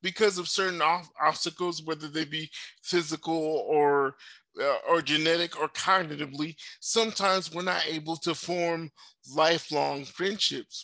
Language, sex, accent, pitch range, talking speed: English, male, American, 155-195 Hz, 125 wpm